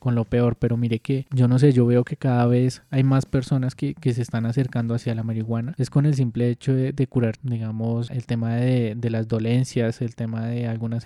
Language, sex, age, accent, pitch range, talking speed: Spanish, male, 20-39, Colombian, 115-130 Hz, 240 wpm